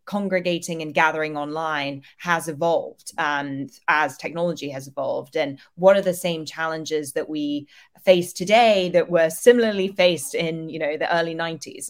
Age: 20-39